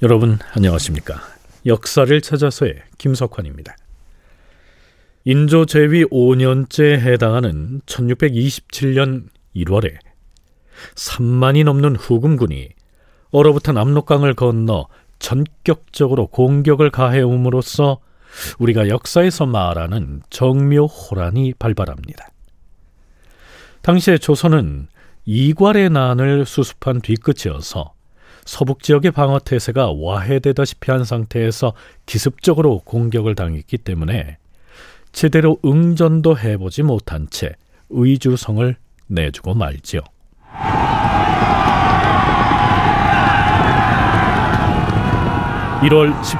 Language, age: Korean, 40-59